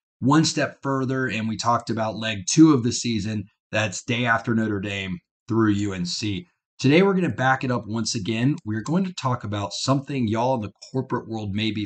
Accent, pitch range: American, 105-130 Hz